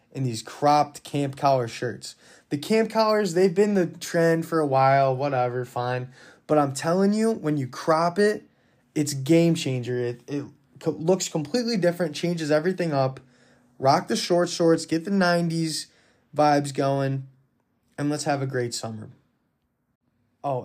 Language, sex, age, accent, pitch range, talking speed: English, male, 20-39, American, 135-170 Hz, 155 wpm